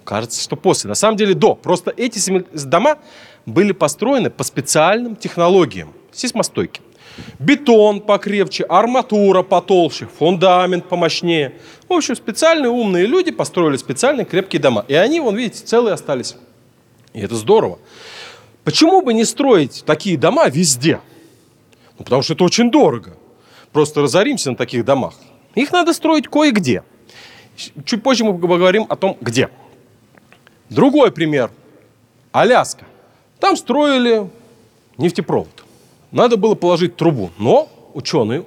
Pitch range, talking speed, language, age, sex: 155-260 Hz, 125 wpm, Russian, 30-49, male